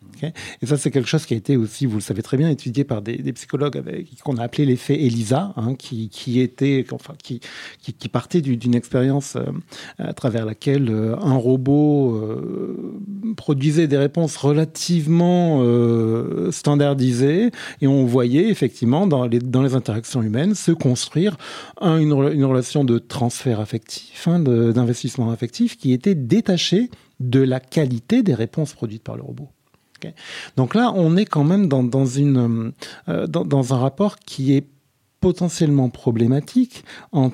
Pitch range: 125-170 Hz